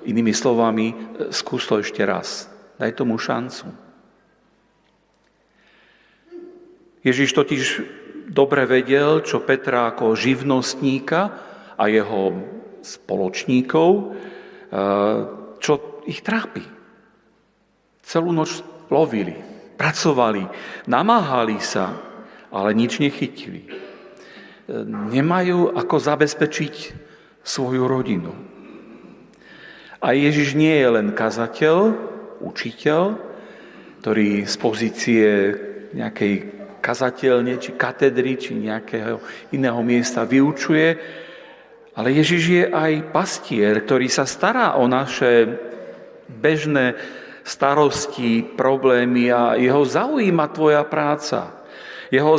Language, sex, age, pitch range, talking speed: Slovak, male, 40-59, 120-160 Hz, 85 wpm